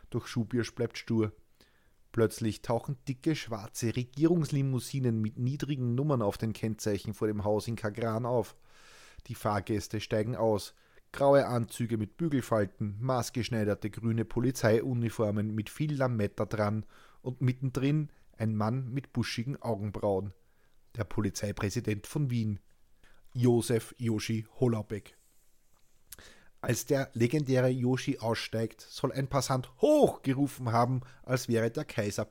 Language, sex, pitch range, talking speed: German, male, 110-130 Hz, 120 wpm